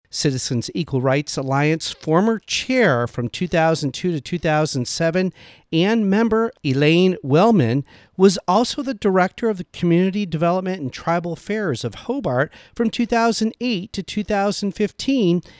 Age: 50-69